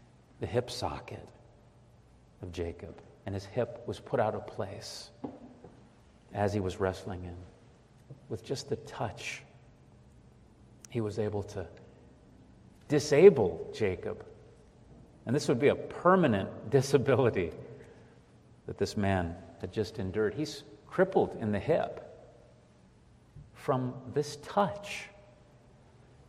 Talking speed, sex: 110 wpm, male